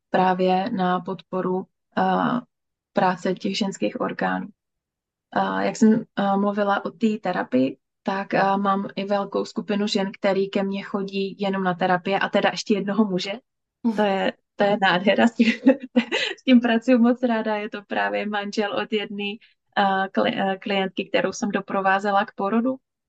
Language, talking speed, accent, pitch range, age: Czech, 155 wpm, native, 195-225 Hz, 20-39